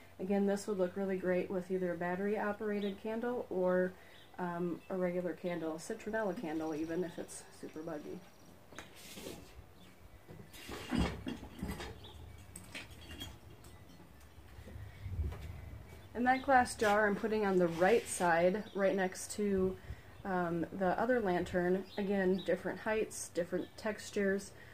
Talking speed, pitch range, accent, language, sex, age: 110 wpm, 175-205 Hz, American, English, female, 30-49